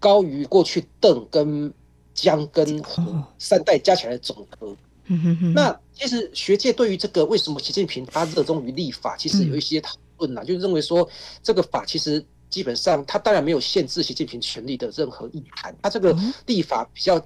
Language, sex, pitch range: Chinese, male, 135-180 Hz